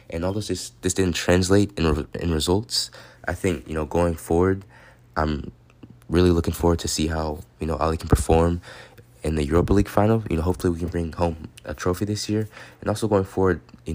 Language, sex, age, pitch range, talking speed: English, male, 20-39, 75-95 Hz, 205 wpm